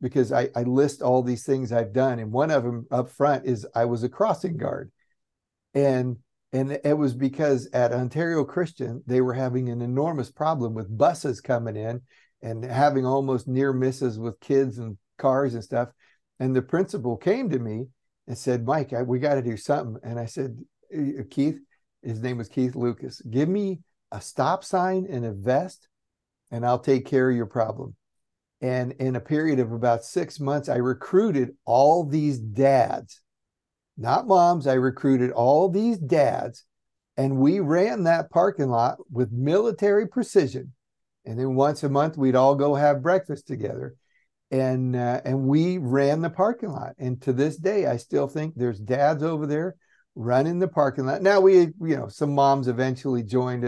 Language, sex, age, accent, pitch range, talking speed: English, male, 60-79, American, 125-145 Hz, 180 wpm